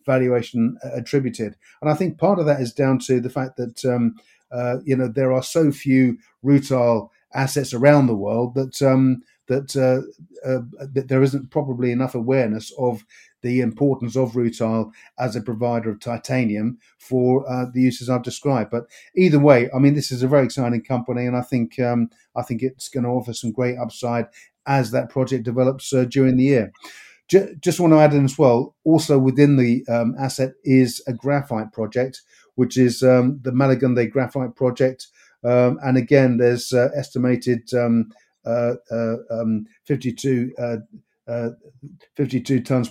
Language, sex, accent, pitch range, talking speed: English, male, British, 120-130 Hz, 175 wpm